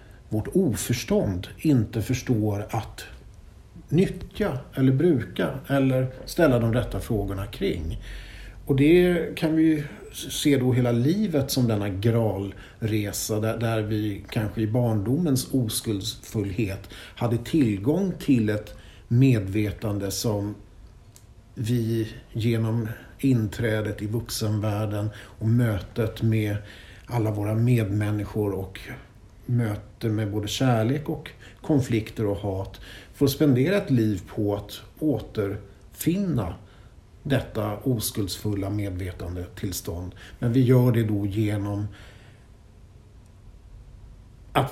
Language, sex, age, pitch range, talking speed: English, male, 60-79, 105-125 Hz, 100 wpm